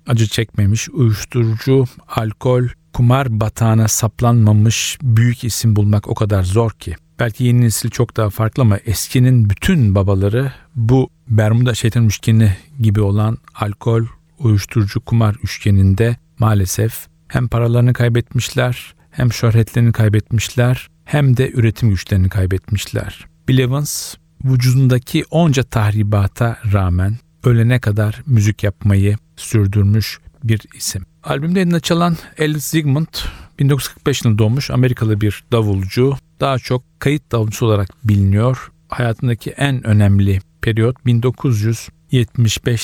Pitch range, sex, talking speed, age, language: 105-125 Hz, male, 110 wpm, 40-59, Turkish